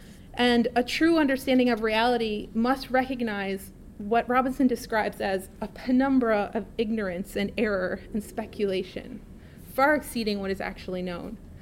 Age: 30-49